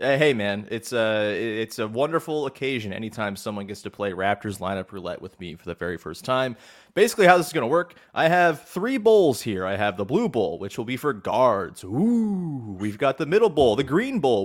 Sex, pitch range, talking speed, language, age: male, 110-180 Hz, 220 wpm, English, 30-49